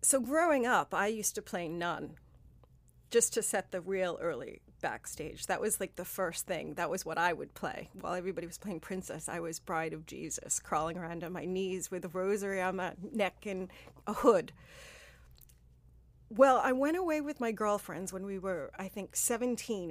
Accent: American